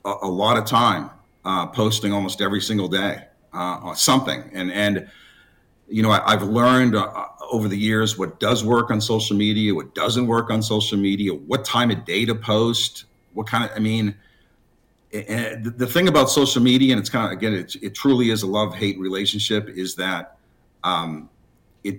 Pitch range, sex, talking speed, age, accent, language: 100-115 Hz, male, 195 wpm, 50-69, American, English